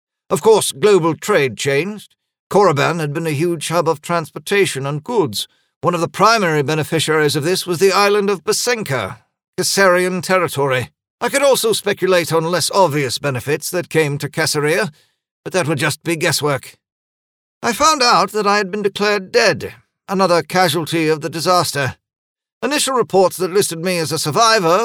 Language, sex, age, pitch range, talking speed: English, male, 50-69, 155-205 Hz, 165 wpm